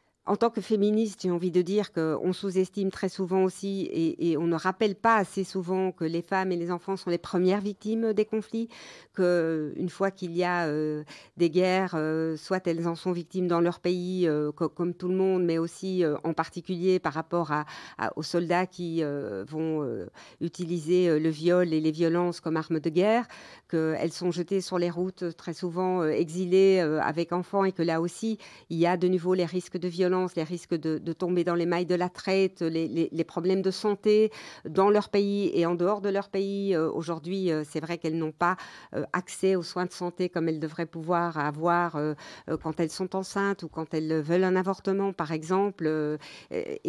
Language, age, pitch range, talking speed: French, 50-69, 160-185 Hz, 215 wpm